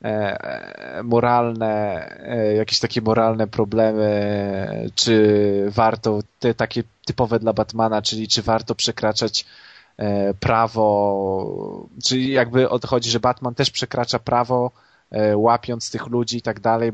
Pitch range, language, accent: 110-120 Hz, Polish, native